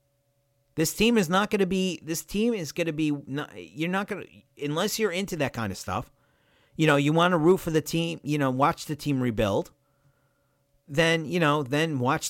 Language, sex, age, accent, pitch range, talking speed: English, male, 50-69, American, 140-170 Hz, 215 wpm